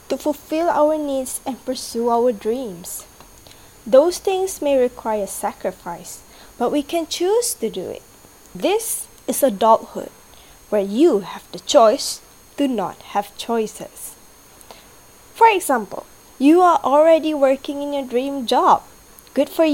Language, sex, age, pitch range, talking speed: English, female, 20-39, 225-315 Hz, 135 wpm